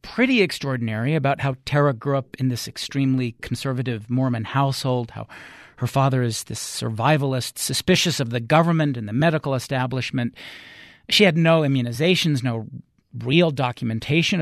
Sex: male